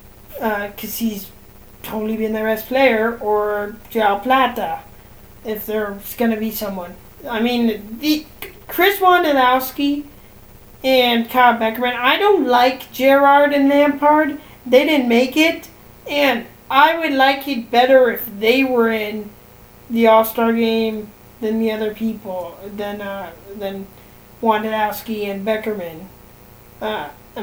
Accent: American